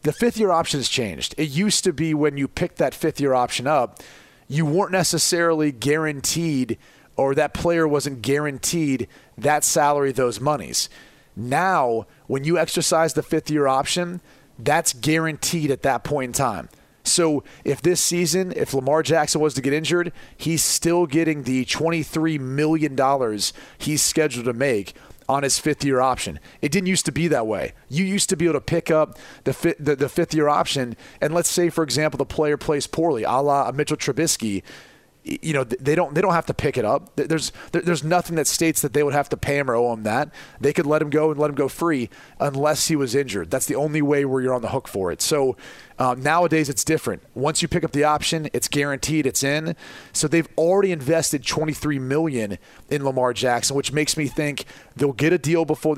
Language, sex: English, male